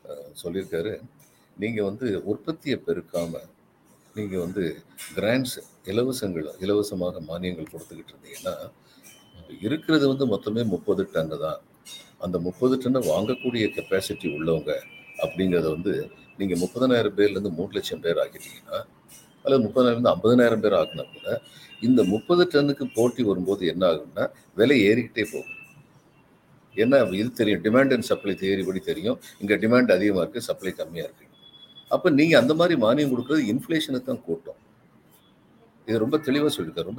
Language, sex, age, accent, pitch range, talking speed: Tamil, male, 50-69, native, 95-135 Hz, 125 wpm